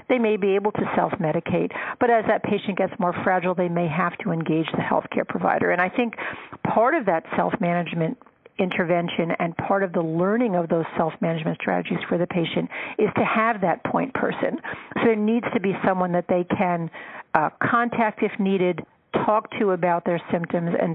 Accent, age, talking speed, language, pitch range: American, 50-69, 190 wpm, English, 180-220 Hz